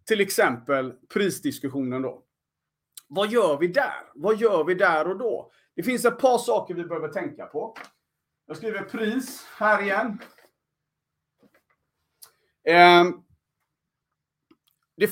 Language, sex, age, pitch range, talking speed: Swedish, male, 40-59, 160-240 Hz, 115 wpm